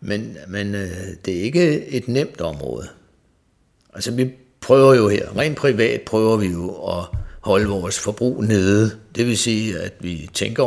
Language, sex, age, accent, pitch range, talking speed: Danish, male, 60-79, native, 95-110 Hz, 165 wpm